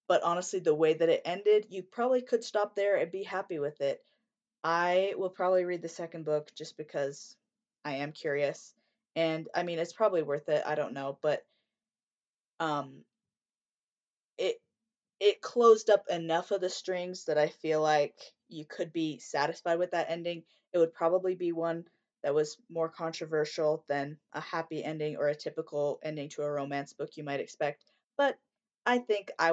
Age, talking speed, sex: 20-39, 180 wpm, female